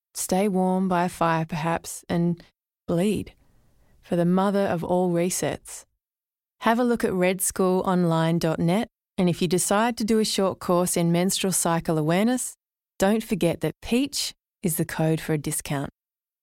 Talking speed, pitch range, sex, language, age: 155 wpm, 170-195 Hz, female, English, 20-39